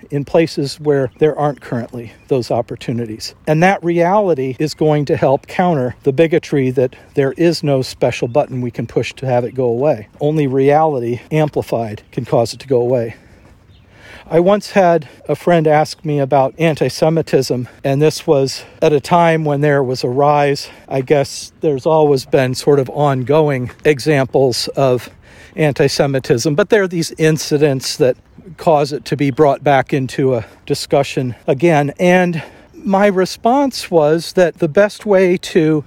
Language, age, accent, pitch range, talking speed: English, 50-69, American, 130-165 Hz, 160 wpm